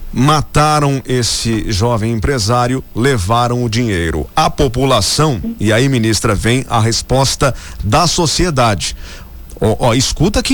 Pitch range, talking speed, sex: 110-160 Hz, 120 wpm, male